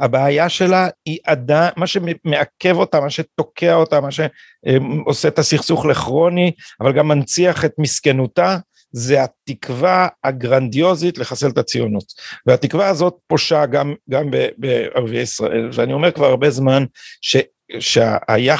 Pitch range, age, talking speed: 125-160 Hz, 50-69, 130 wpm